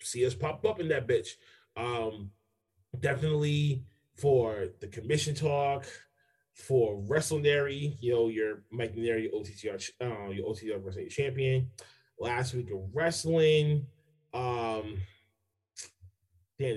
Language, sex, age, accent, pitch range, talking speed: English, male, 30-49, American, 105-135 Hz, 120 wpm